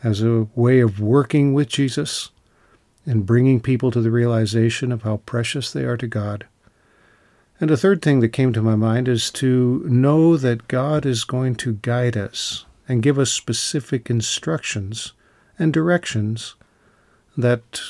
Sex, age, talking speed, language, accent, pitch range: male, 50-69, 160 wpm, English, American, 110-130 Hz